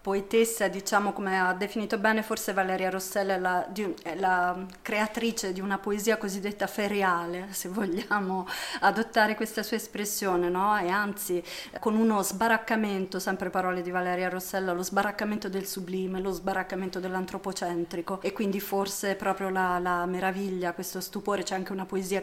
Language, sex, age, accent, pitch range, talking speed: Italian, female, 30-49, native, 185-205 Hz, 150 wpm